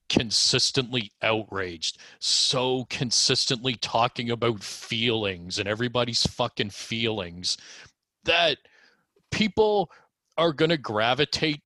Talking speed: 85 wpm